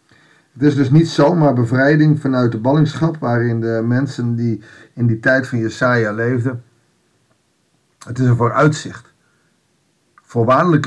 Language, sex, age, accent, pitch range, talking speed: Dutch, male, 50-69, Dutch, 115-150 Hz, 135 wpm